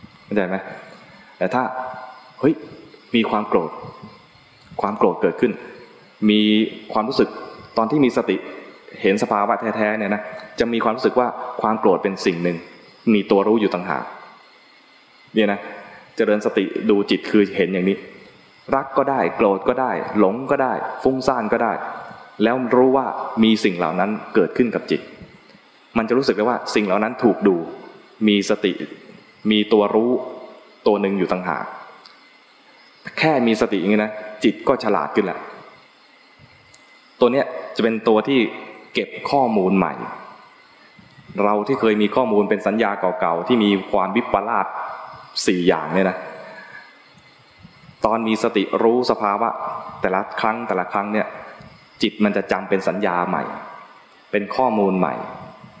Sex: male